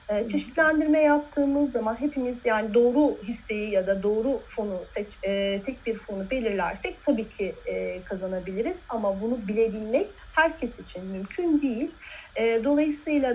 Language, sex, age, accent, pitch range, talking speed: Turkish, female, 40-59, native, 205-290 Hz, 120 wpm